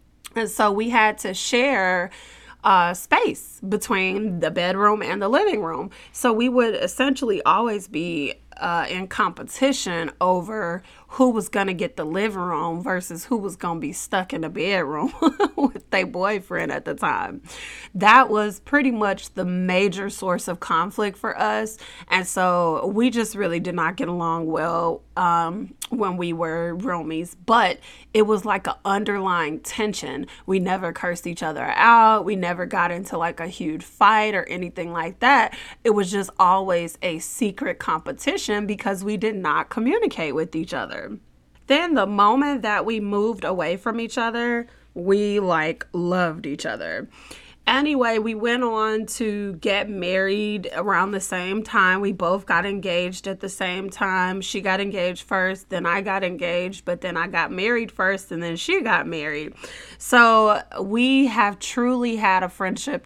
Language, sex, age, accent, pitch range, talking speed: English, female, 20-39, American, 175-220 Hz, 165 wpm